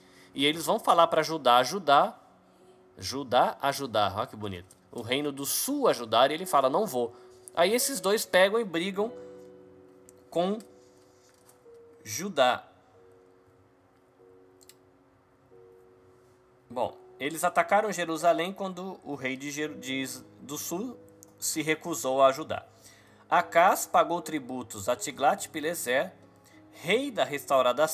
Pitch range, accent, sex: 100-165 Hz, Brazilian, male